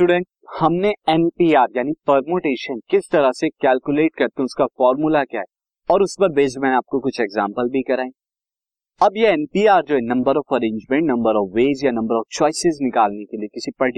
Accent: native